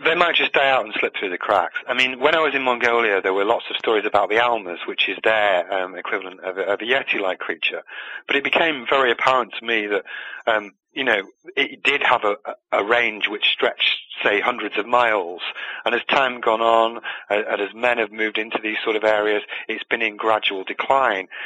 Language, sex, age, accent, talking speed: English, male, 40-59, British, 220 wpm